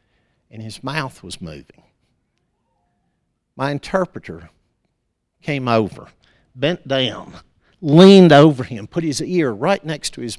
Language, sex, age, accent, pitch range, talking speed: English, male, 50-69, American, 95-130 Hz, 120 wpm